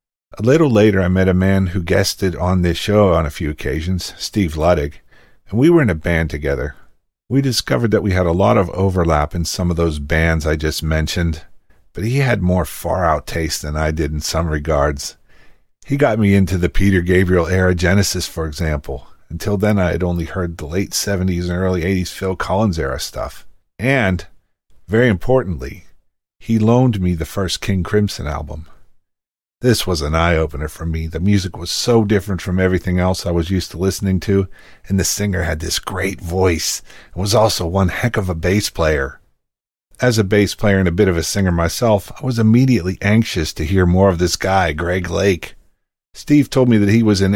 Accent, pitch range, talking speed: American, 85-105 Hz, 200 wpm